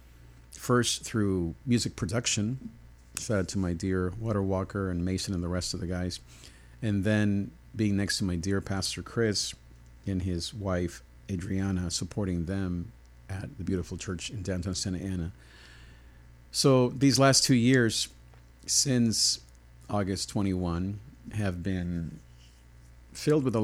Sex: male